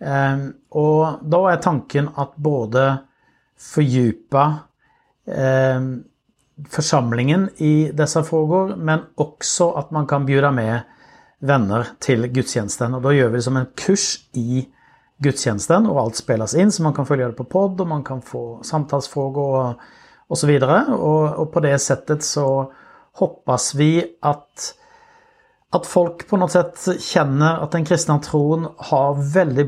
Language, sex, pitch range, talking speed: Swedish, male, 130-160 Hz, 150 wpm